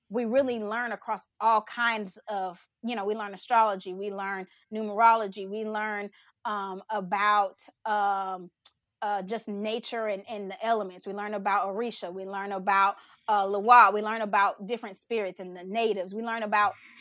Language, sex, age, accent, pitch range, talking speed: English, female, 20-39, American, 200-240 Hz, 165 wpm